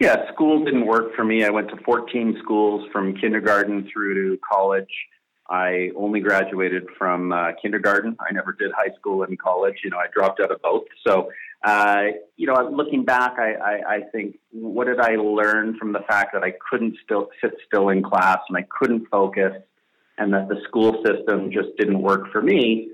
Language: English